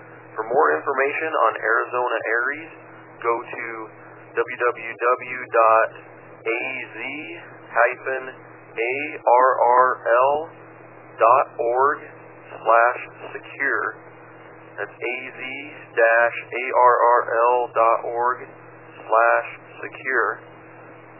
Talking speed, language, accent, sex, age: 30 wpm, English, American, male, 40-59